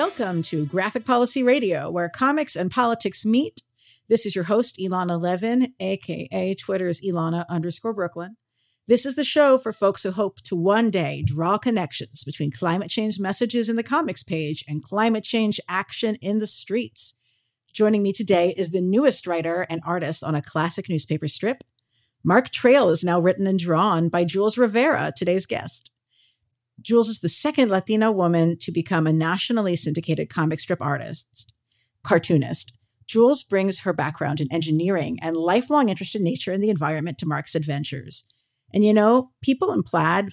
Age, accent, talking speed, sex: 50-69, American, 170 wpm, female